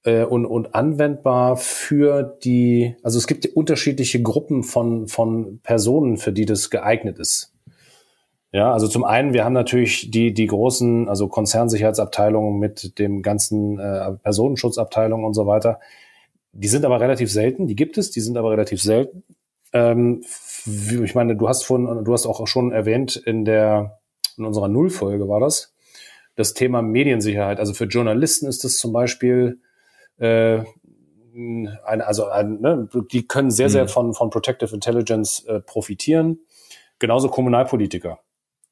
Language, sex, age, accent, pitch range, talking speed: German, male, 30-49, German, 110-130 Hz, 140 wpm